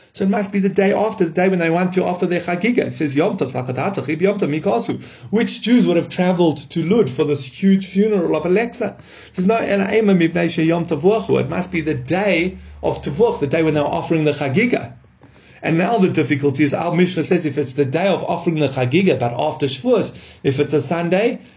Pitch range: 140-185 Hz